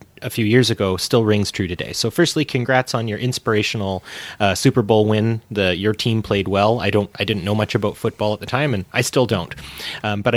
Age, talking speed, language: 30-49, 230 wpm, English